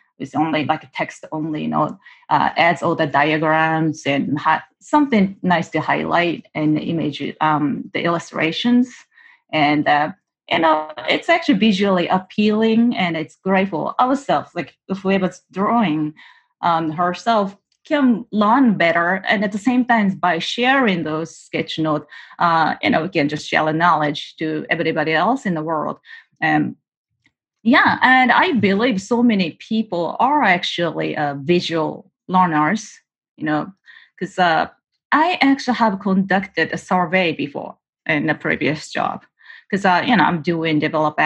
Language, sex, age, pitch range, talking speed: English, female, 30-49, 155-210 Hz, 155 wpm